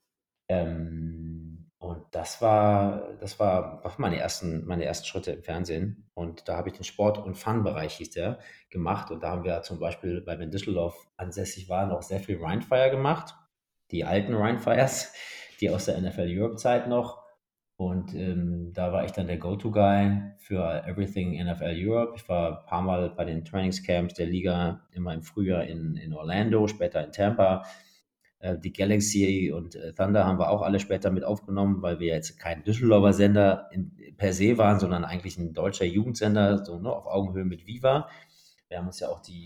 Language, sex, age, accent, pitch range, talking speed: German, male, 30-49, German, 85-105 Hz, 175 wpm